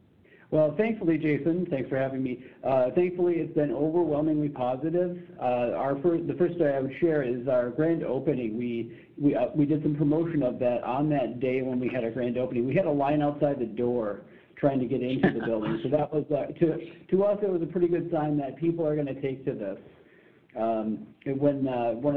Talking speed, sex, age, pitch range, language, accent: 225 wpm, male, 50-69, 130-155 Hz, English, American